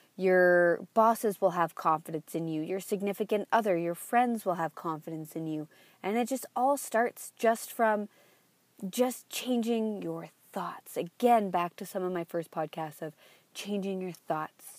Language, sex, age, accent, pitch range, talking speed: English, female, 20-39, American, 175-225 Hz, 160 wpm